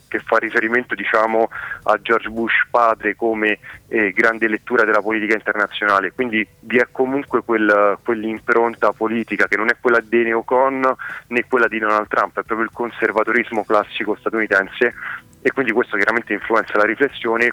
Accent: native